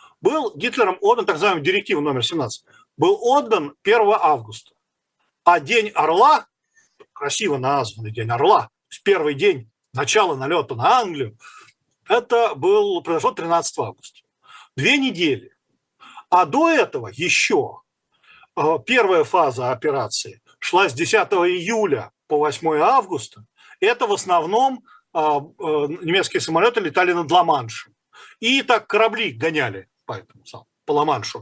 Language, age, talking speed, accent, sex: Russian, 40-59, 115 wpm, native, male